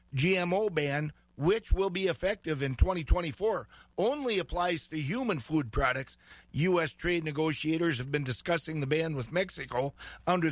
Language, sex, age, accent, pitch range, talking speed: English, male, 50-69, American, 150-185 Hz, 145 wpm